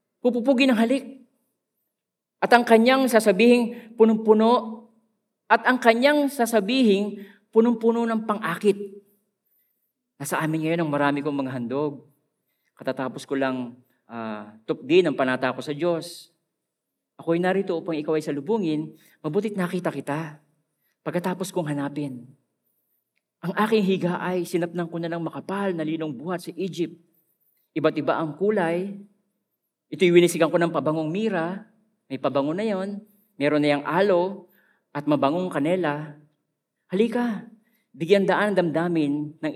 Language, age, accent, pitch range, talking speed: Filipino, 40-59, native, 155-220 Hz, 130 wpm